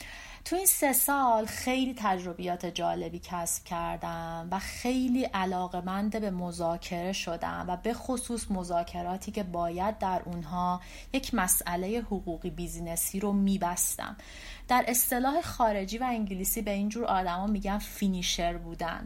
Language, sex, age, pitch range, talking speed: Persian, female, 30-49, 180-230 Hz, 125 wpm